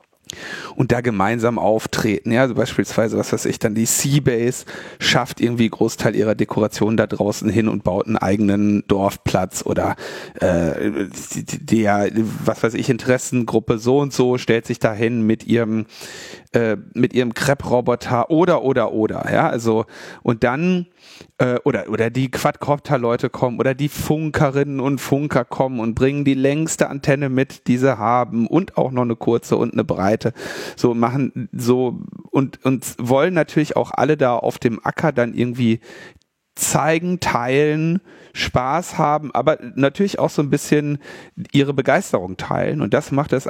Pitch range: 115-145 Hz